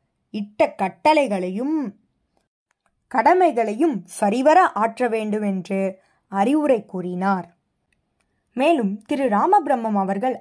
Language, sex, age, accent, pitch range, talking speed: Tamil, female, 20-39, native, 210-305 Hz, 75 wpm